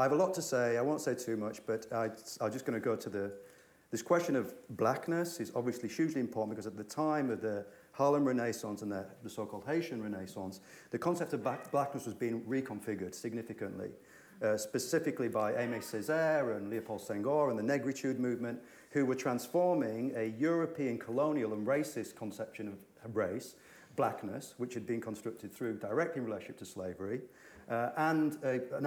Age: 40-59